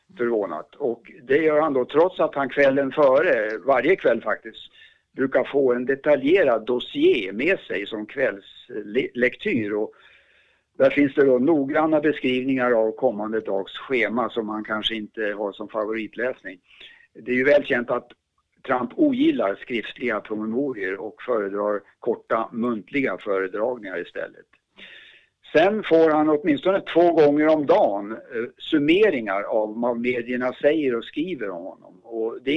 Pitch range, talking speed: 115-180 Hz, 140 wpm